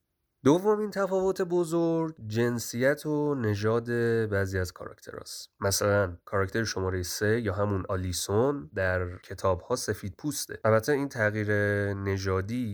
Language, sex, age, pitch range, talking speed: Persian, male, 30-49, 95-120 Hz, 115 wpm